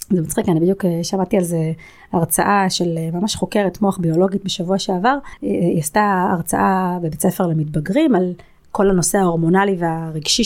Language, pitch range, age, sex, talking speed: Hebrew, 175-215 Hz, 30-49, female, 150 wpm